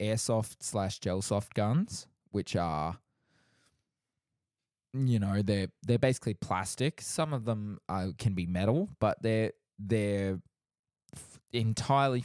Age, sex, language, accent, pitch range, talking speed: 20-39, male, English, Australian, 100-120 Hz, 110 wpm